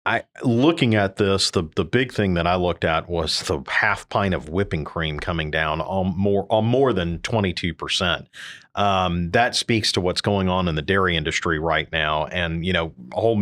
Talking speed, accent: 200 wpm, American